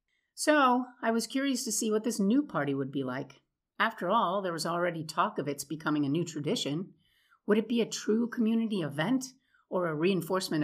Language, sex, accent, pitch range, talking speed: English, female, American, 150-210 Hz, 195 wpm